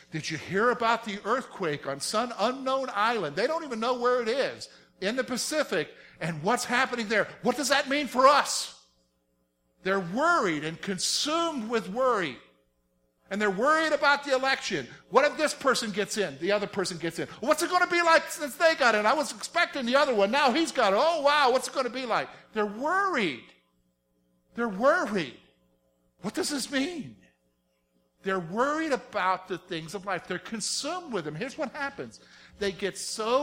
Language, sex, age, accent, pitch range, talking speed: English, male, 50-69, American, 165-270 Hz, 190 wpm